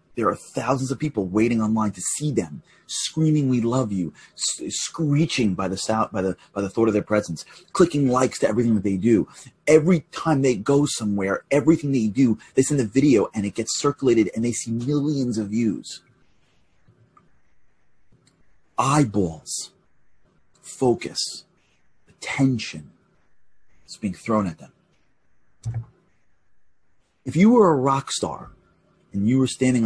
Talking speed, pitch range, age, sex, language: 150 wpm, 105-145 Hz, 30-49, male, English